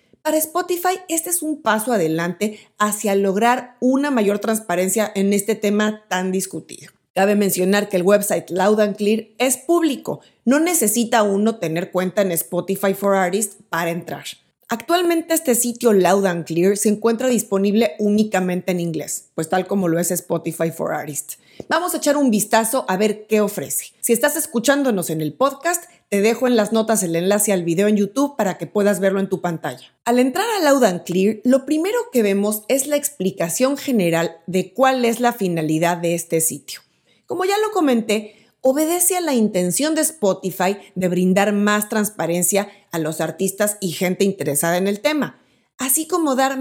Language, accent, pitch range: Spanish, Mexican, 185-250 Hz